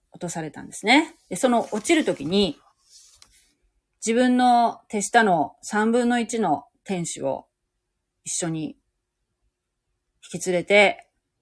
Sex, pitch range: female, 160-225 Hz